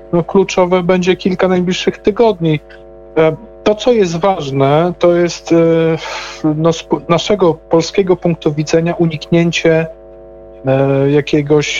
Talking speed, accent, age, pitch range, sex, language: 100 wpm, native, 40-59, 130-160 Hz, male, Polish